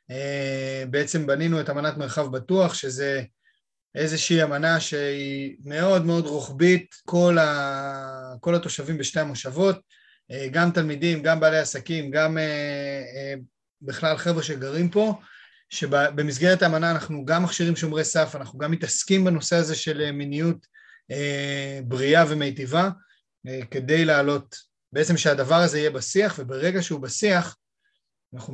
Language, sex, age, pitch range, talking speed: Hebrew, male, 30-49, 135-165 Hz, 130 wpm